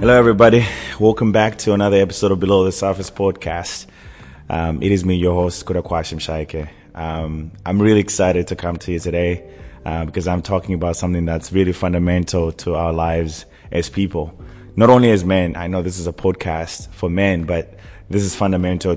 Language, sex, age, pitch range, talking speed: English, male, 20-39, 85-95 Hz, 185 wpm